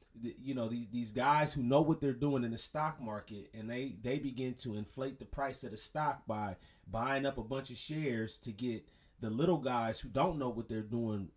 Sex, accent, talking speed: male, American, 225 wpm